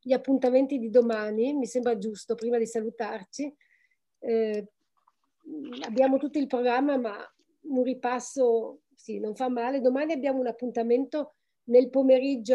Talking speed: 135 wpm